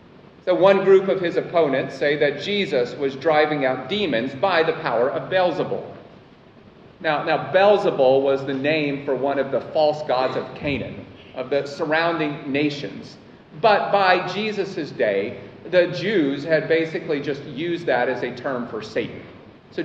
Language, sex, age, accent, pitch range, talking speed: English, male, 40-59, American, 145-195 Hz, 160 wpm